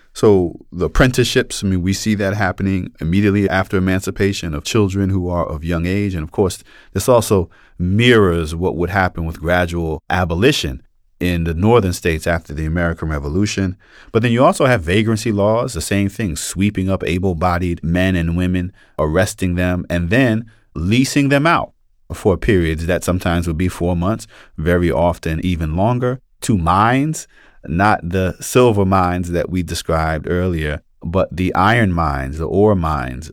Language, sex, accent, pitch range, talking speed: English, male, American, 85-110 Hz, 165 wpm